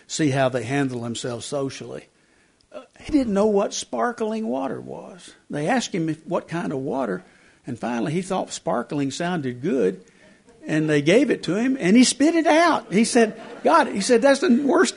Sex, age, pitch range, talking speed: male, 60-79, 145-225 Hz, 190 wpm